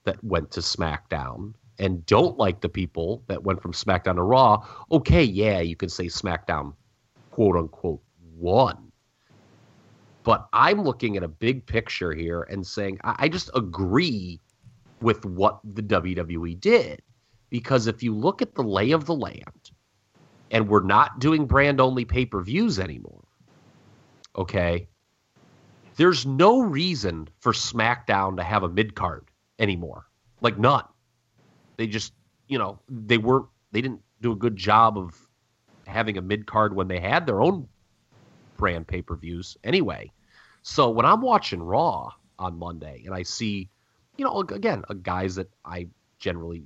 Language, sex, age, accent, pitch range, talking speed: English, male, 30-49, American, 90-120 Hz, 155 wpm